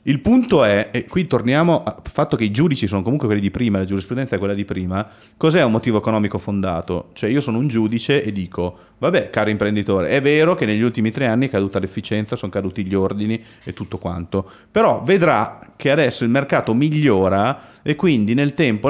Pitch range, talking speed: 100-125 Hz, 205 wpm